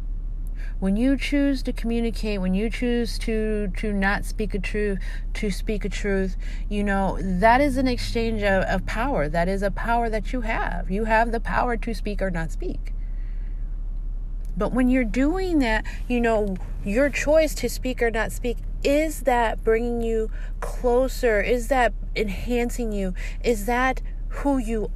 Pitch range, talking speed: 195-245 Hz, 170 wpm